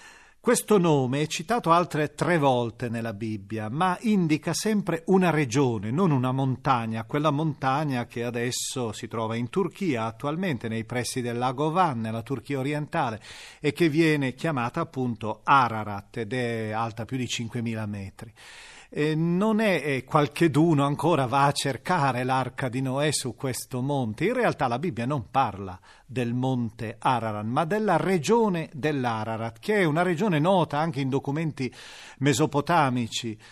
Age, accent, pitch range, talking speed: 40-59, native, 125-170 Hz, 150 wpm